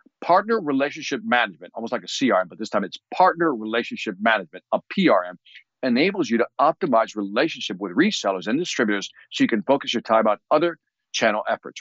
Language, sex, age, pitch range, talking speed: English, male, 50-69, 110-175 Hz, 180 wpm